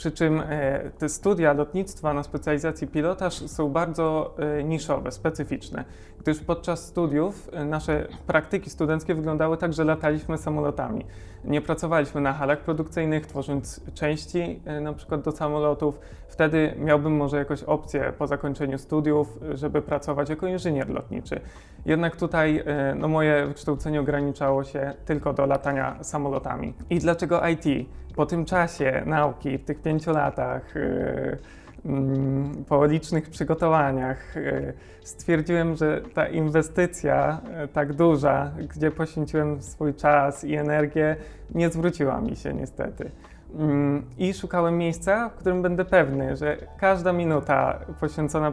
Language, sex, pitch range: Polish, male, 145-160 Hz